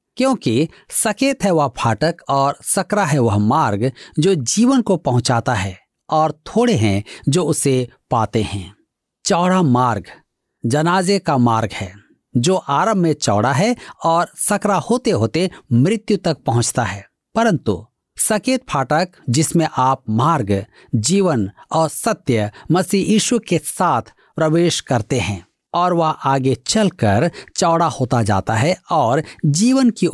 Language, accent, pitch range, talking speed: Hindi, native, 120-185 Hz, 135 wpm